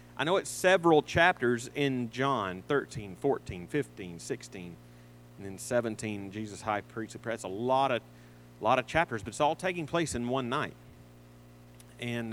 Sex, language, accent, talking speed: male, English, American, 165 wpm